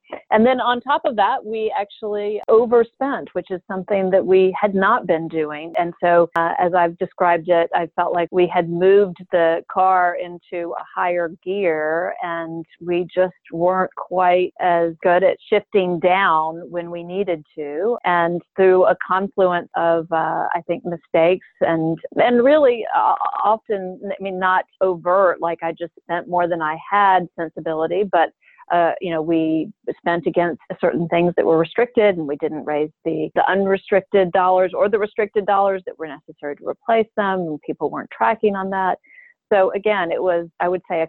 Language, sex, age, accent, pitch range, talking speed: English, female, 40-59, American, 170-195 Hz, 175 wpm